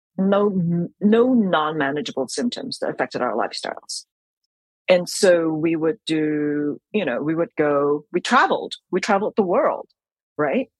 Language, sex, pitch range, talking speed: English, female, 155-215 Hz, 140 wpm